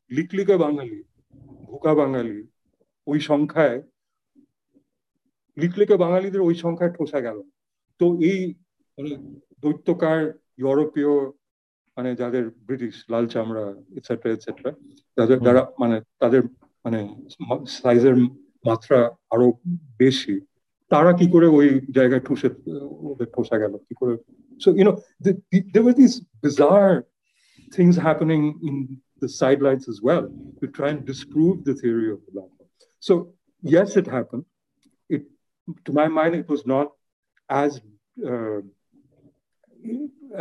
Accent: native